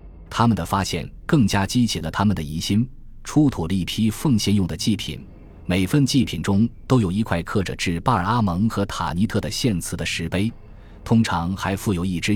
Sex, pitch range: male, 85-110 Hz